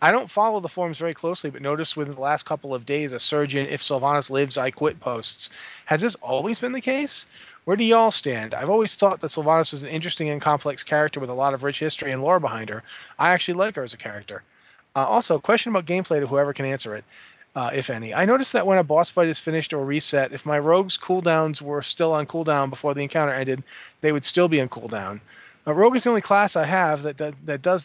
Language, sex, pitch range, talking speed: English, male, 140-180 Hz, 245 wpm